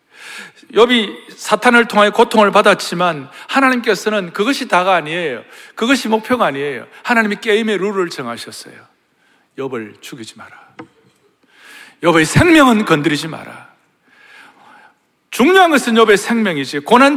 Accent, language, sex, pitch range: native, Korean, male, 200-270 Hz